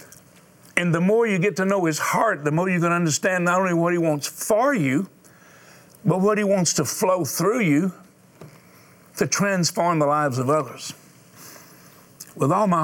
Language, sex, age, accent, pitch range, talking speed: English, male, 50-69, American, 140-170 Hz, 180 wpm